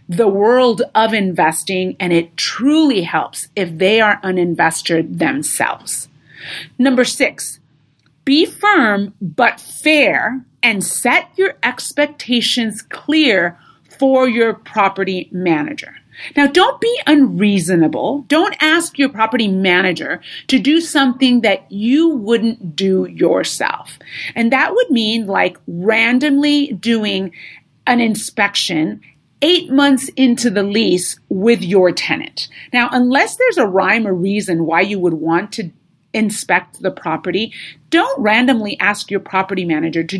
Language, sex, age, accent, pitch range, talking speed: English, female, 30-49, American, 180-260 Hz, 125 wpm